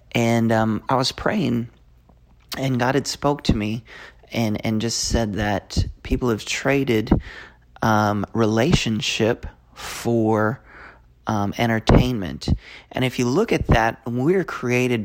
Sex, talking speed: male, 130 wpm